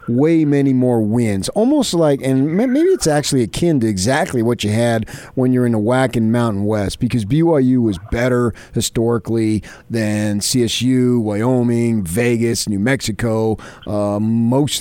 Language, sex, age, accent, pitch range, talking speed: English, male, 40-59, American, 115-170 Hz, 145 wpm